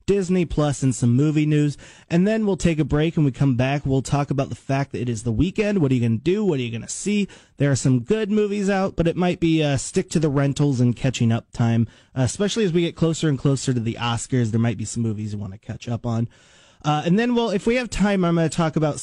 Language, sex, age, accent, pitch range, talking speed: English, male, 30-49, American, 125-170 Hz, 290 wpm